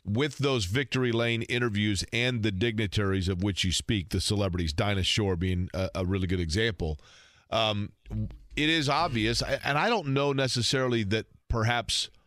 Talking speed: 160 wpm